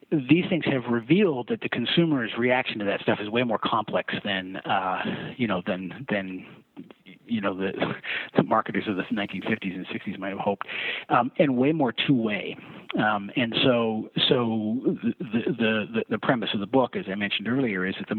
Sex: male